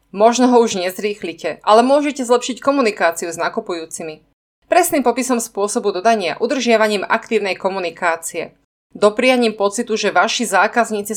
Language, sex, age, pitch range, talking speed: Slovak, female, 30-49, 175-235 Hz, 120 wpm